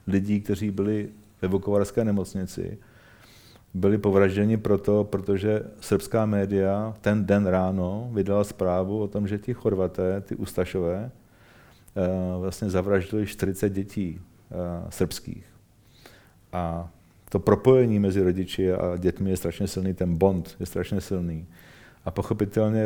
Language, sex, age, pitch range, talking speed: Czech, male, 40-59, 95-105 Hz, 120 wpm